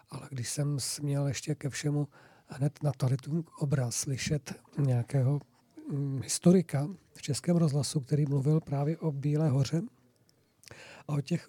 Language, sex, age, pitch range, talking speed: Czech, male, 50-69, 145-175 Hz, 130 wpm